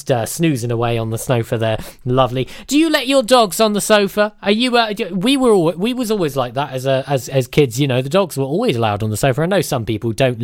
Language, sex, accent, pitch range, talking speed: English, male, British, 130-190 Hz, 275 wpm